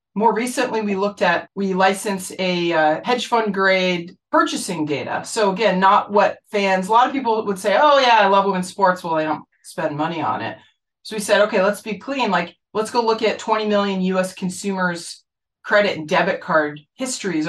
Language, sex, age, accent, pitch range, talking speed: English, female, 30-49, American, 175-210 Hz, 200 wpm